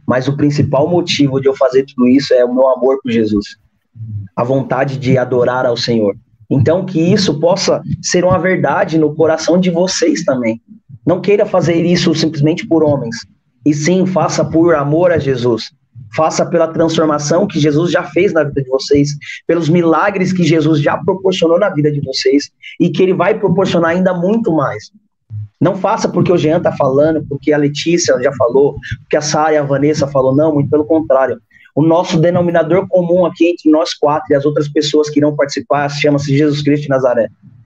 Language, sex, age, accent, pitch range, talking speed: Portuguese, male, 20-39, Brazilian, 135-170 Hz, 190 wpm